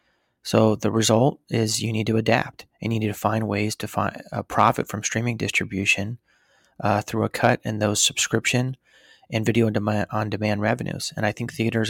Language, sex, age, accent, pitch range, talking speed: English, male, 30-49, American, 105-115 Hz, 185 wpm